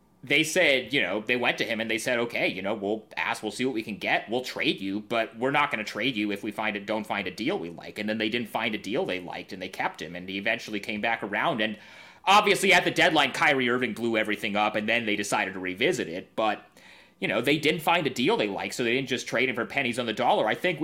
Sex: male